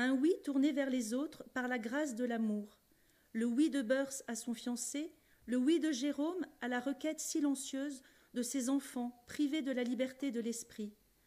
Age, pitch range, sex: 40-59, 245-295 Hz, female